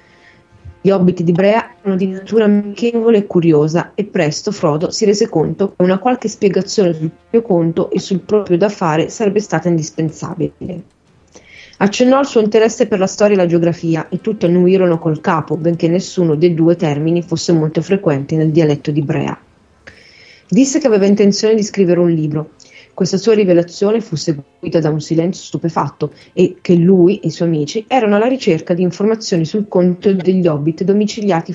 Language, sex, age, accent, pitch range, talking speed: Italian, female, 30-49, native, 165-210 Hz, 175 wpm